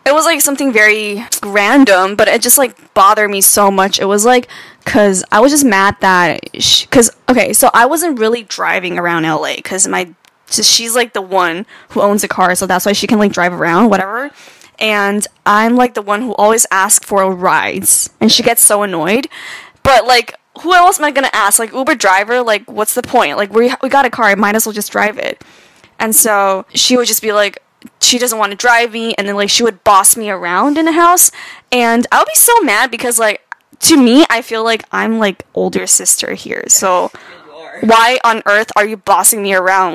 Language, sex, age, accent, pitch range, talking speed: English, female, 10-29, American, 205-250 Hz, 220 wpm